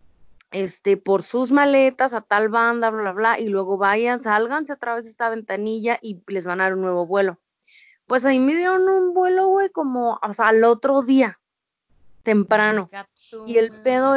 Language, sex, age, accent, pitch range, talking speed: Spanish, female, 20-39, Mexican, 200-245 Hz, 185 wpm